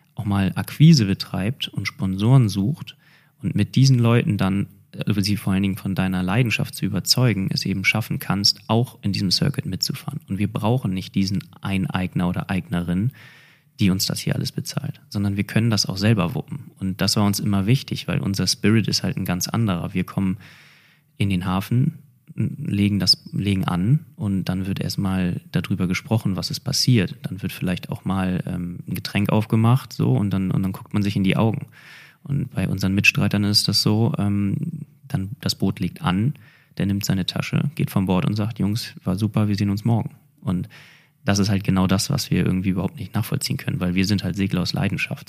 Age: 30-49